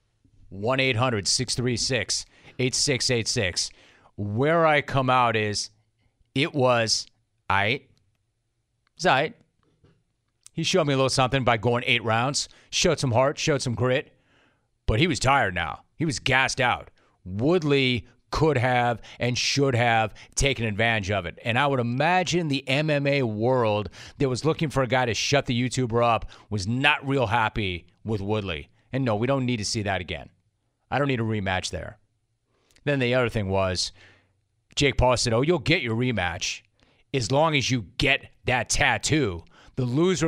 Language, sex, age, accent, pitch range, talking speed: English, male, 30-49, American, 110-140 Hz, 175 wpm